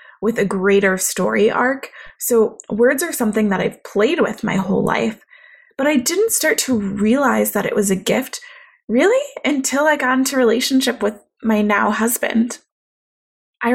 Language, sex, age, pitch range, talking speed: English, female, 20-39, 205-260 Hz, 165 wpm